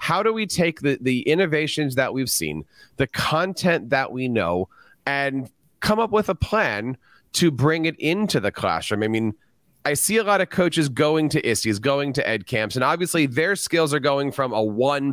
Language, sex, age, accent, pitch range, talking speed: English, male, 30-49, American, 125-170 Hz, 200 wpm